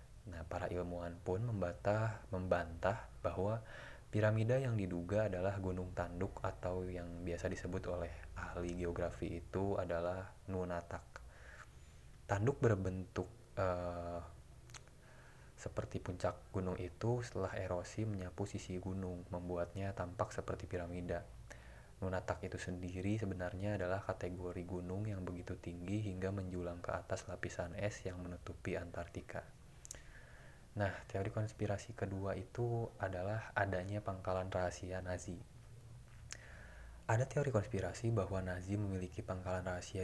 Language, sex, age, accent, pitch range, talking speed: Indonesian, male, 20-39, native, 90-105 Hz, 110 wpm